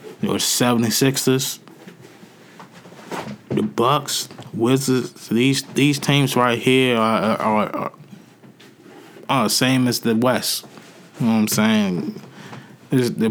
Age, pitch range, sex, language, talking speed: 20-39, 105-125 Hz, male, English, 115 wpm